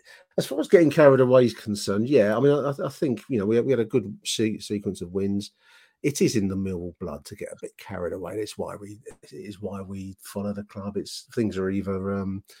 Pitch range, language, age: 95-125 Hz, English, 40-59